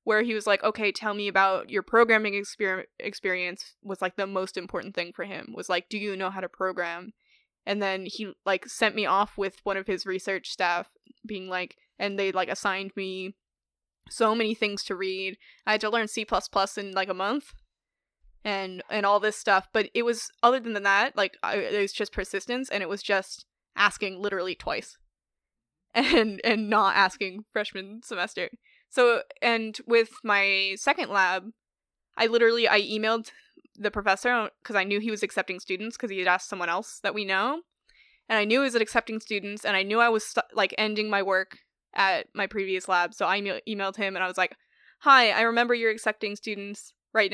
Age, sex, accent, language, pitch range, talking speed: 10-29, female, American, English, 195-225 Hz, 195 wpm